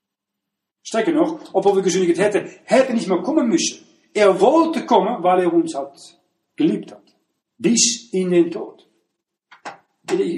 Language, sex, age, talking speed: German, male, 40-59, 145 wpm